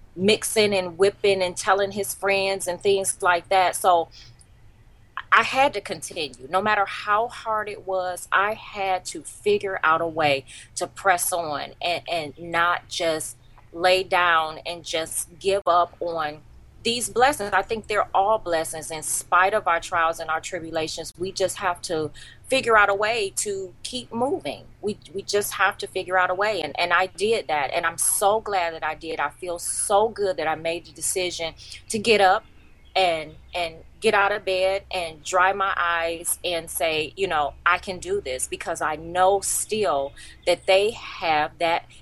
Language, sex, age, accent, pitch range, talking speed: English, female, 20-39, American, 165-205 Hz, 185 wpm